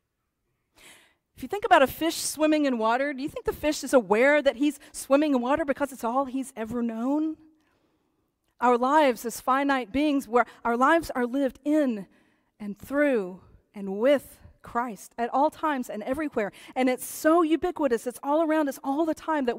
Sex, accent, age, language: female, American, 40-59, English